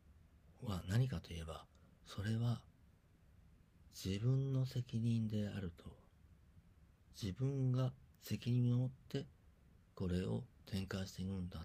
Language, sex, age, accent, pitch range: Japanese, male, 50-69, native, 85-105 Hz